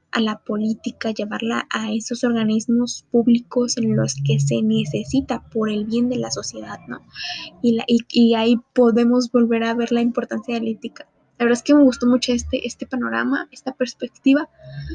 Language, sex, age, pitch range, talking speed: Spanish, female, 20-39, 215-245 Hz, 185 wpm